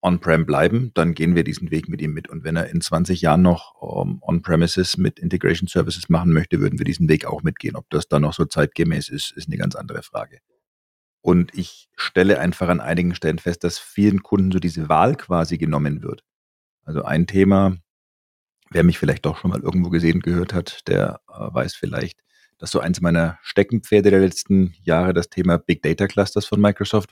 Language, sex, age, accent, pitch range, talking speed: German, male, 40-59, German, 80-90 Hz, 200 wpm